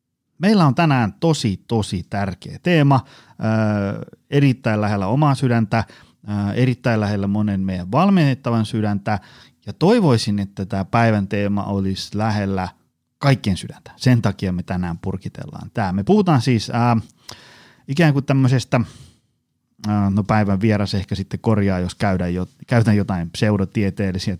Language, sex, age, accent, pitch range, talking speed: Finnish, male, 30-49, native, 100-125 Hz, 135 wpm